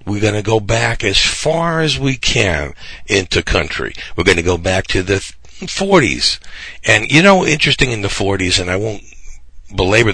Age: 50-69